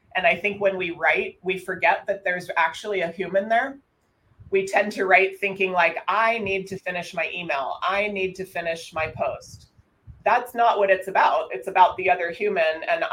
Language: English